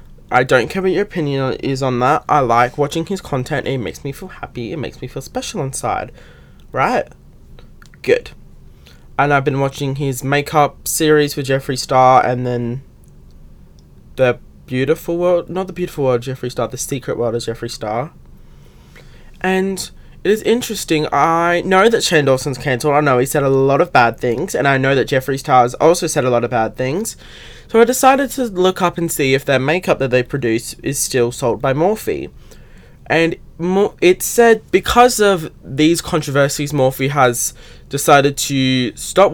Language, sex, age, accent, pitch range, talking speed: English, male, 20-39, Australian, 130-175 Hz, 180 wpm